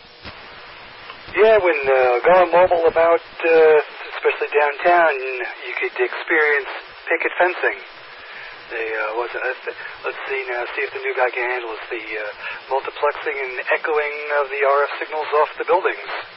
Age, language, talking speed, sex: 40-59, English, 140 wpm, male